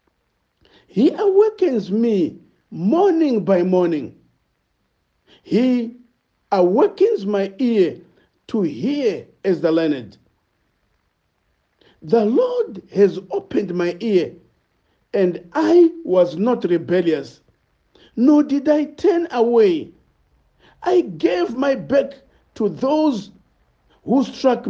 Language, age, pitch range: English, 50-69, 190-310 Hz